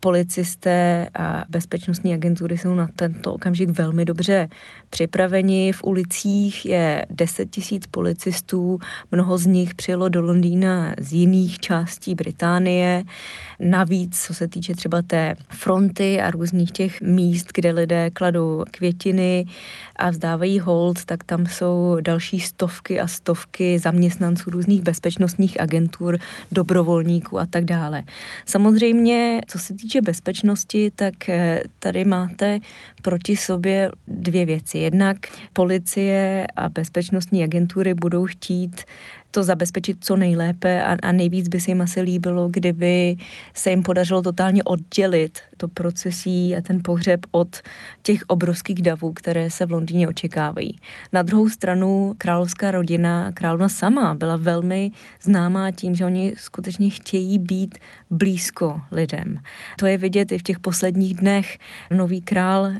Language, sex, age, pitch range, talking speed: Czech, female, 20-39, 175-190 Hz, 135 wpm